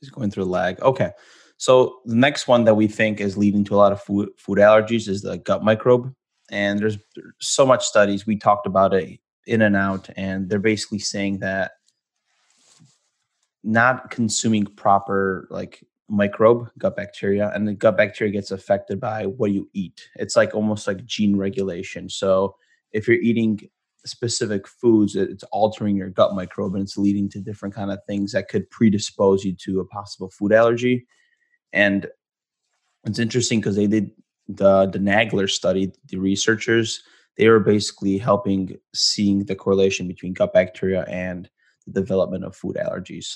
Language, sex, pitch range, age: English, male, 95-110 Hz, 20-39